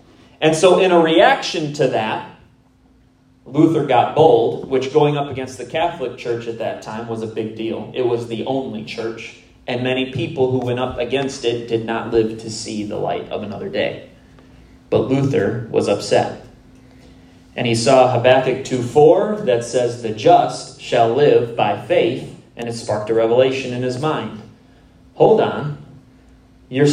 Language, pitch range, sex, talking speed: English, 115-145 Hz, male, 165 wpm